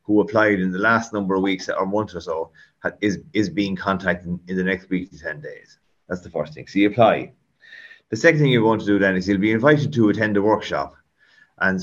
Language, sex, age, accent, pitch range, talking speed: English, male, 30-49, Irish, 90-110 Hz, 245 wpm